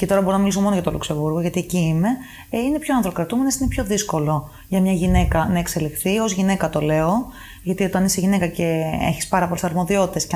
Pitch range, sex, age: 165-210 Hz, female, 20-39